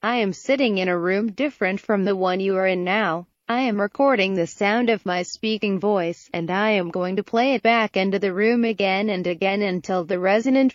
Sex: female